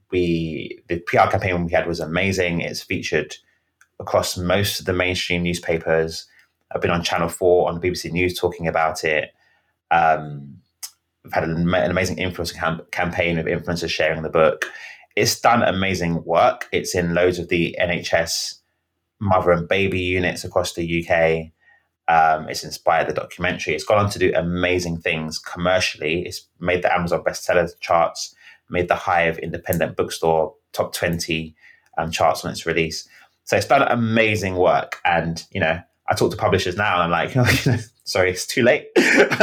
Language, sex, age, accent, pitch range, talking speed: English, male, 20-39, British, 80-90 Hz, 170 wpm